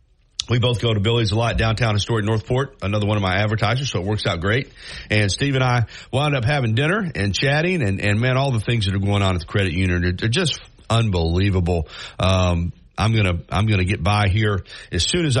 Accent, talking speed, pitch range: American, 240 wpm, 95-120 Hz